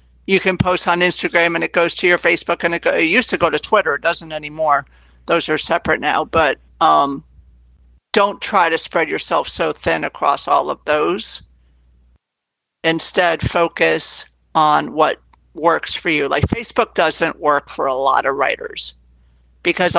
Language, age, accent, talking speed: English, 60-79, American, 170 wpm